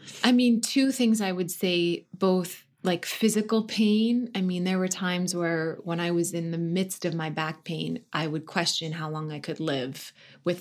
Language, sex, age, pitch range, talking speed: English, female, 20-39, 160-195 Hz, 205 wpm